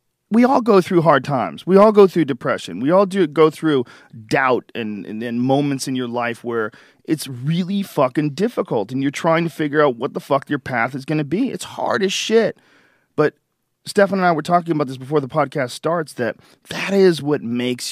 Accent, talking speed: American, 220 wpm